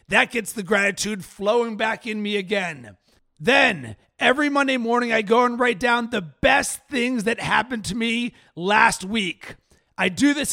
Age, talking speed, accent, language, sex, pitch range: 30-49, 170 wpm, American, English, male, 200-235 Hz